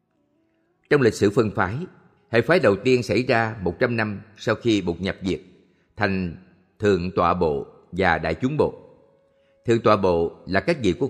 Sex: male